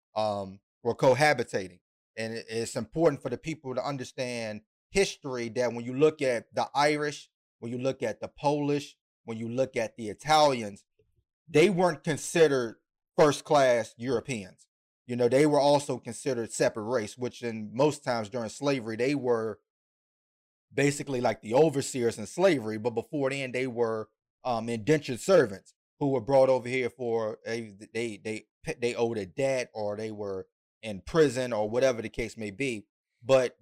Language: English